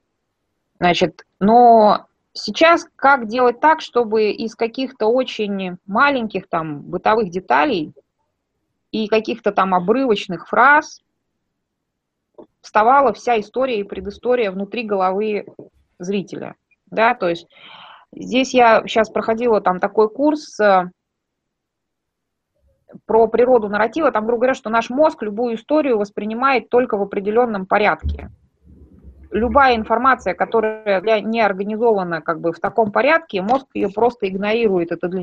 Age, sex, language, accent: 20-39, female, Russian, native